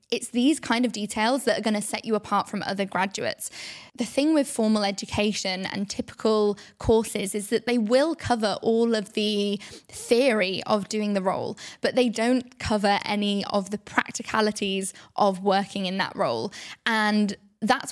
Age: 10-29